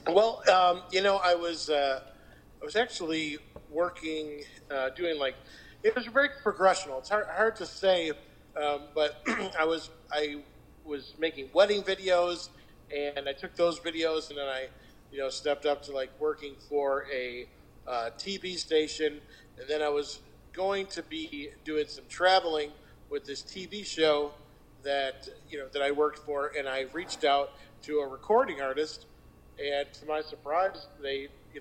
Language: English